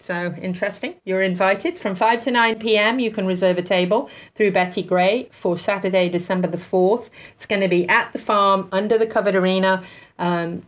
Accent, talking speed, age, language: British, 190 wpm, 40-59, English